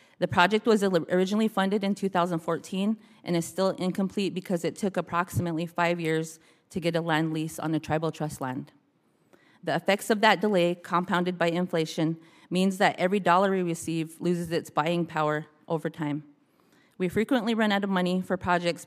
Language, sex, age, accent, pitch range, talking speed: English, female, 30-49, American, 165-190 Hz, 175 wpm